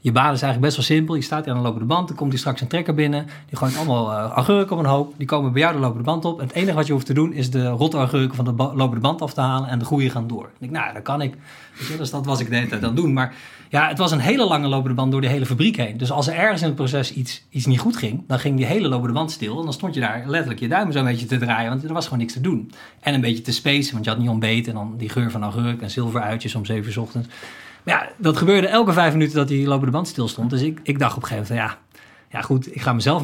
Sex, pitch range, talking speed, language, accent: male, 125-155 Hz, 325 wpm, Dutch, Dutch